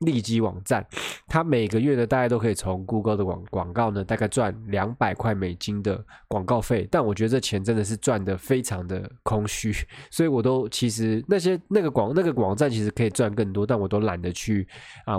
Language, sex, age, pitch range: Chinese, male, 20-39, 100-125 Hz